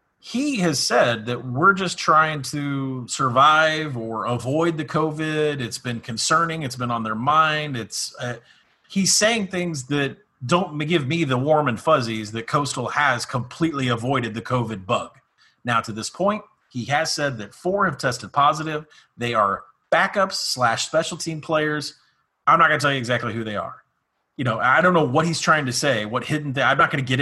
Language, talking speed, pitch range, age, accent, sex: English, 200 wpm, 120-155 Hz, 30-49, American, male